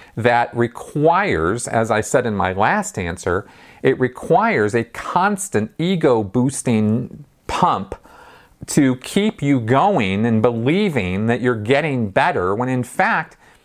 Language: English